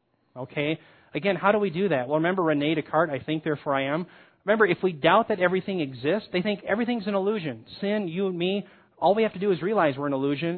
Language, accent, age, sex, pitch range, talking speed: English, American, 30-49, male, 145-180 Hz, 240 wpm